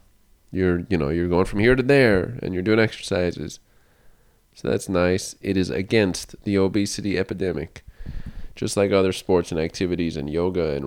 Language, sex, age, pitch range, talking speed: English, male, 20-39, 90-110 Hz, 170 wpm